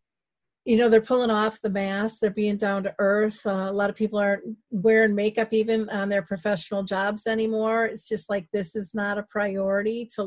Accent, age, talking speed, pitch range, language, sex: American, 40-59, 205 wpm, 195-220 Hz, English, female